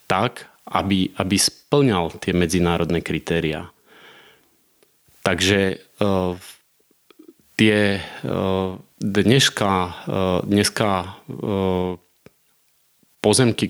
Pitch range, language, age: 90-110 Hz, Slovak, 30-49